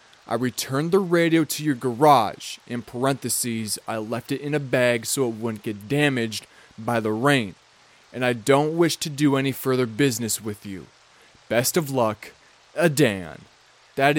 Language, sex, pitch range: English, male, 110-145 Hz